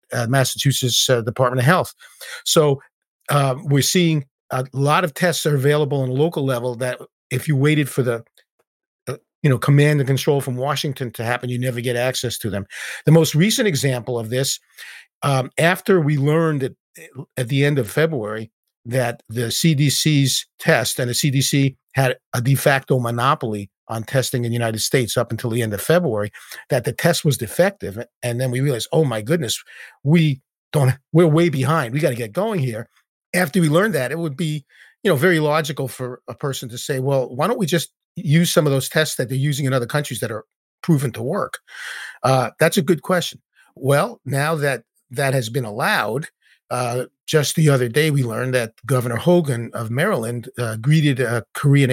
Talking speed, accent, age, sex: 200 wpm, American, 50-69, male